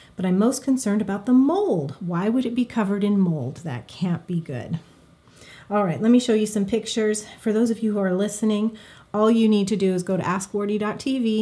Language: English